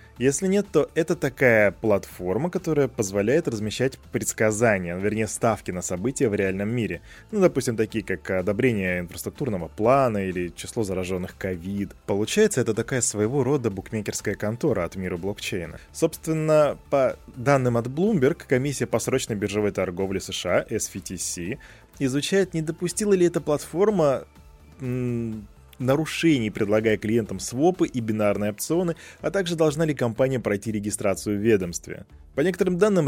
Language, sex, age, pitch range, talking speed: Russian, male, 20-39, 100-145 Hz, 135 wpm